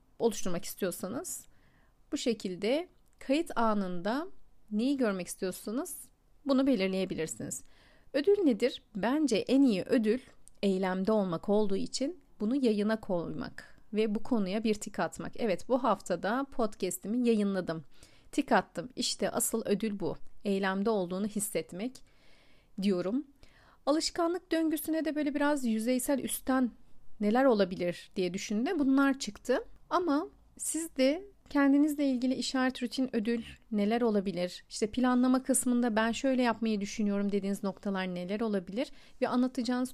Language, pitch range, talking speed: Turkish, 200-275 Hz, 120 wpm